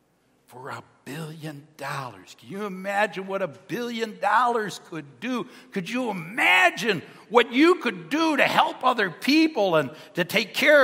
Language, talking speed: English, 155 wpm